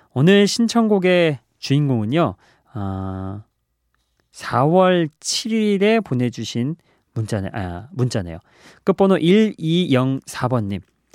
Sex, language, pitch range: male, Korean, 115-170 Hz